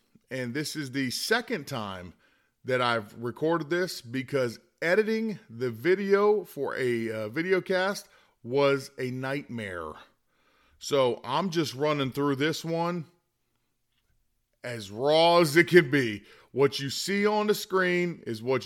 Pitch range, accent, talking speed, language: 125-155 Hz, American, 140 wpm, English